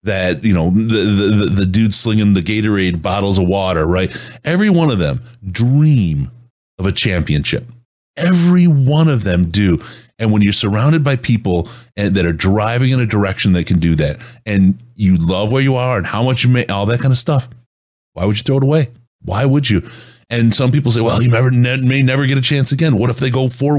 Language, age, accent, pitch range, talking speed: English, 30-49, American, 95-130 Hz, 220 wpm